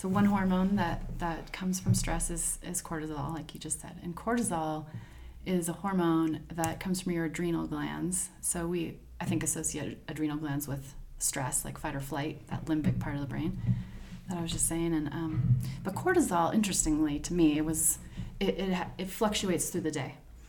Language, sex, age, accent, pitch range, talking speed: English, female, 30-49, American, 150-185 Hz, 195 wpm